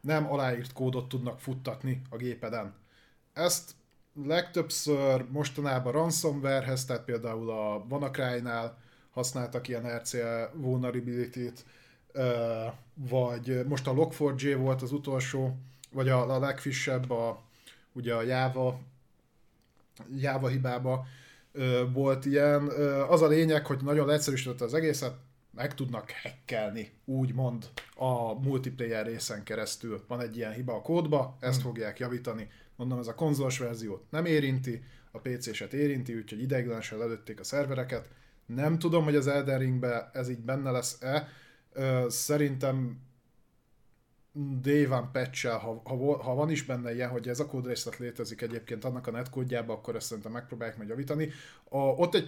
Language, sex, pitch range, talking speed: Hungarian, male, 120-140 Hz, 125 wpm